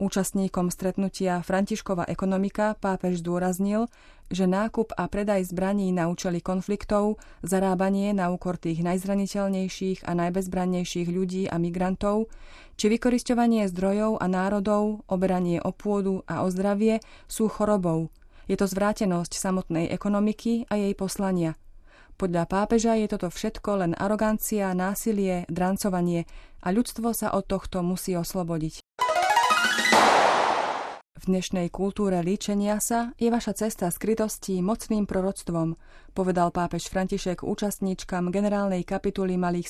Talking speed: 120 wpm